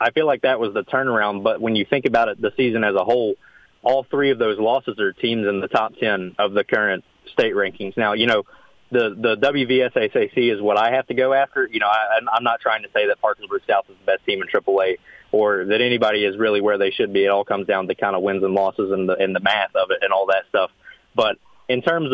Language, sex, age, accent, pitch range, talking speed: English, male, 30-49, American, 105-140 Hz, 265 wpm